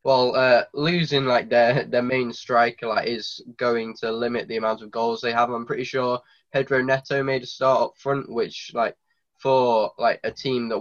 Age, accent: 10-29, British